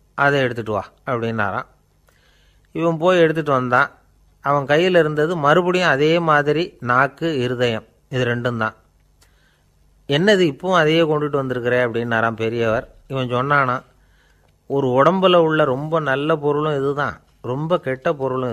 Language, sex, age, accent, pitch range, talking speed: Tamil, male, 30-49, native, 105-155 Hz, 125 wpm